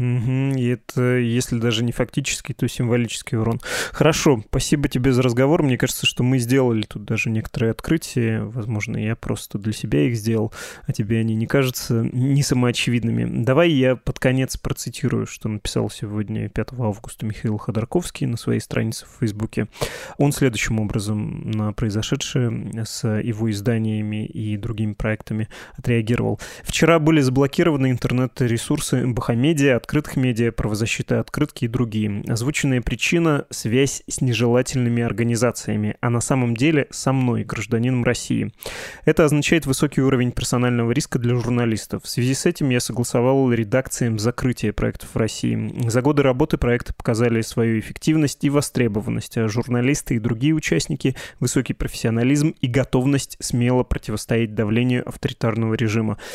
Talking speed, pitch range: 140 wpm, 115-135 Hz